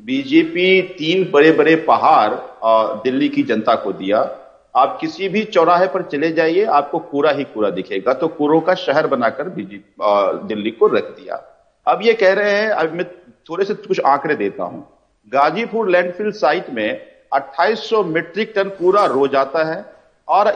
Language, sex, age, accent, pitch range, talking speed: English, male, 50-69, Indian, 165-235 Hz, 165 wpm